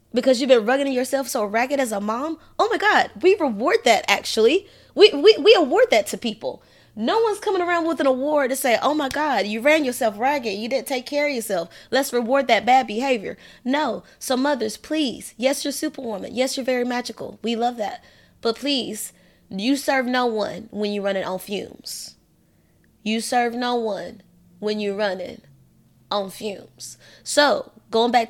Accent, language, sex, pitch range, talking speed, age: American, English, female, 225-310 Hz, 185 wpm, 20-39